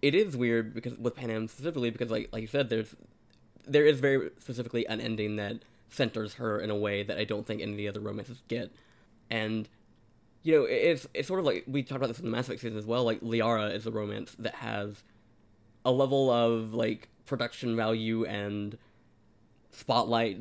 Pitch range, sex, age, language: 110-125 Hz, male, 20-39, English